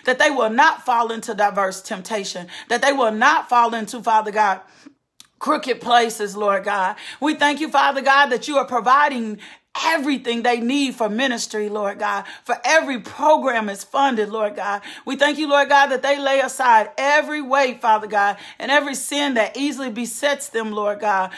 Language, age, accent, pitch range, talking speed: English, 40-59, American, 225-285 Hz, 180 wpm